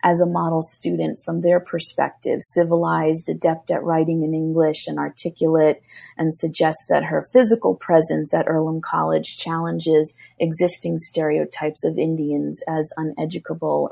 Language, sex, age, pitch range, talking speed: English, female, 30-49, 155-185 Hz, 135 wpm